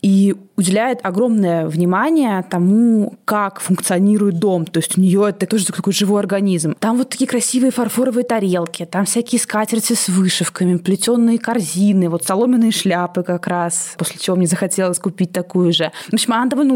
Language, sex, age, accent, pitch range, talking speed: Russian, female, 20-39, native, 180-225 Hz, 165 wpm